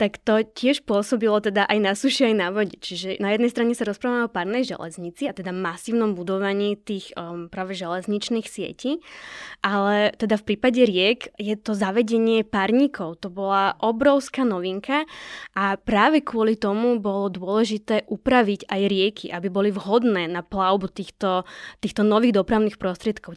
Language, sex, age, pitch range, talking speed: Slovak, female, 20-39, 200-240 Hz, 155 wpm